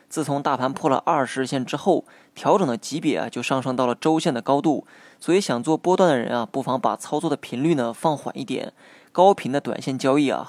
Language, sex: Chinese, male